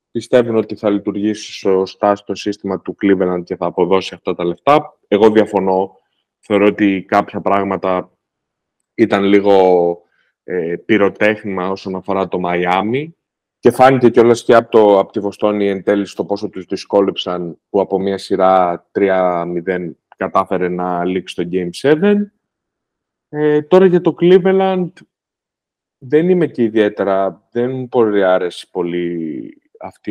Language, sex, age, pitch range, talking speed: Greek, male, 20-39, 95-120 Hz, 130 wpm